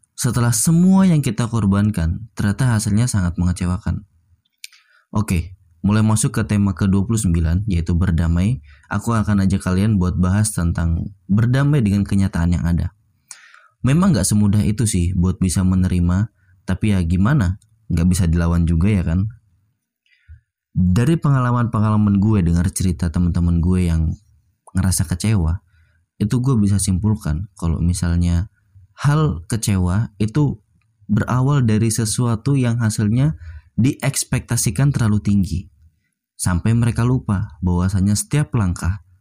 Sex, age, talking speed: male, 20-39, 120 wpm